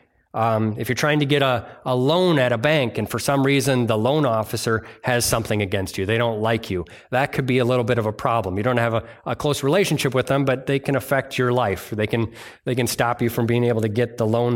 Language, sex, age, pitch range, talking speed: English, male, 30-49, 110-135 Hz, 265 wpm